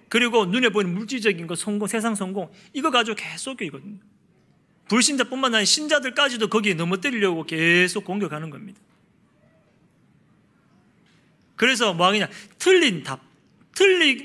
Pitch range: 190-265 Hz